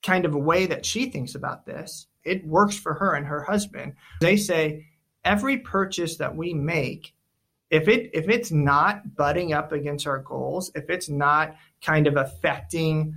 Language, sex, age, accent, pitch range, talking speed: English, male, 30-49, American, 145-175 Hz, 175 wpm